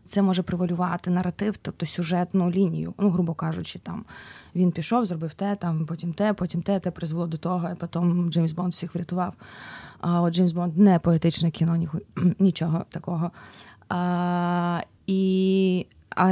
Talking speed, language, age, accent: 175 wpm, Ukrainian, 20-39, native